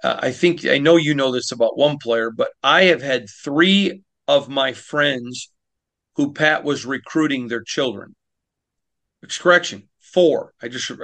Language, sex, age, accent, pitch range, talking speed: English, male, 40-59, American, 125-160 Hz, 165 wpm